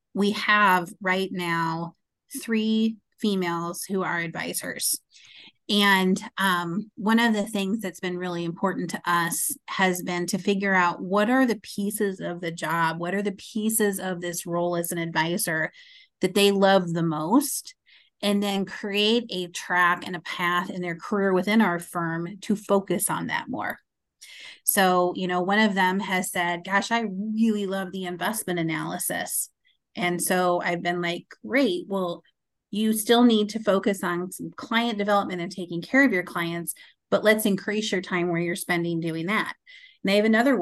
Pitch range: 175-215 Hz